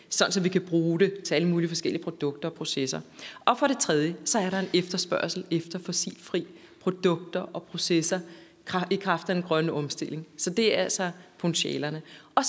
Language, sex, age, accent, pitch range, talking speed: Danish, female, 30-49, native, 170-225 Hz, 185 wpm